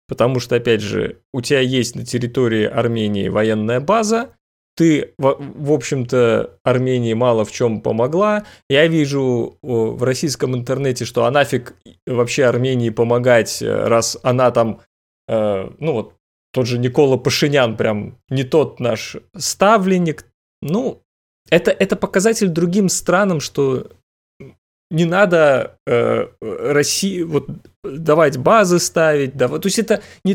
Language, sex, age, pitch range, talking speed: Russian, male, 20-39, 120-160 Hz, 130 wpm